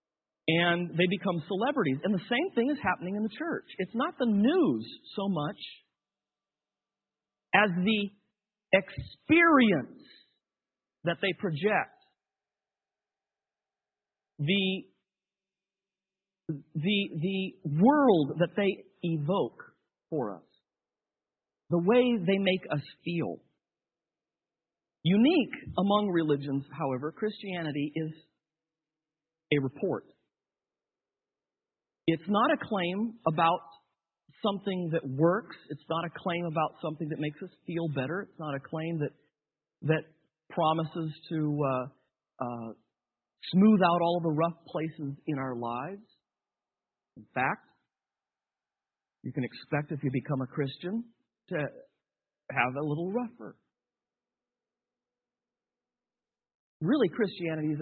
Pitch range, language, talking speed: 150-205 Hz, English, 110 wpm